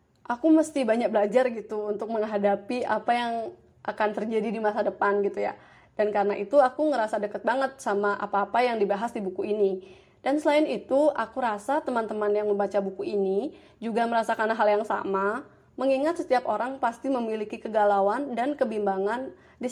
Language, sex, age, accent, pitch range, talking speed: Indonesian, female, 20-39, native, 200-255 Hz, 165 wpm